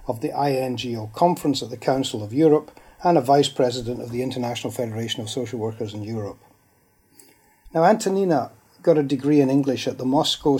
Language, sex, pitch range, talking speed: English, male, 120-145 Hz, 180 wpm